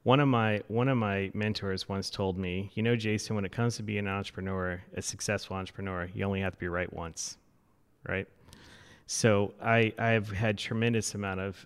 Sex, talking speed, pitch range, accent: male, 195 wpm, 95-110 Hz, American